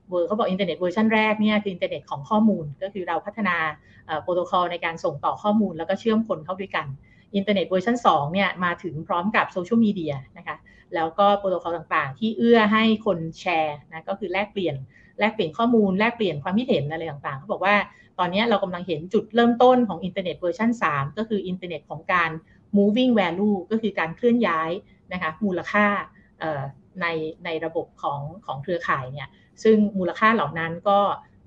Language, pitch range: Thai, 160-210 Hz